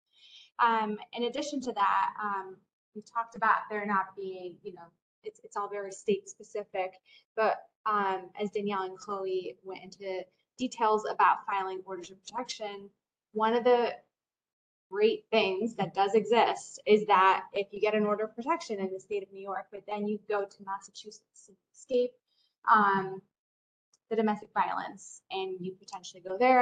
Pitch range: 195-230 Hz